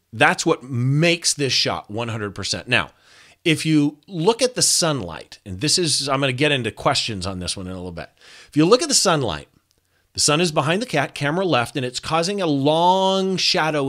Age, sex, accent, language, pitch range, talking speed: 40-59, male, American, English, 115-170 Hz, 210 wpm